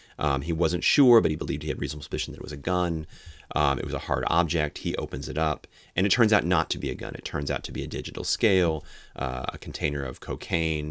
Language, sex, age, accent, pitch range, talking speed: English, male, 30-49, American, 75-90 Hz, 265 wpm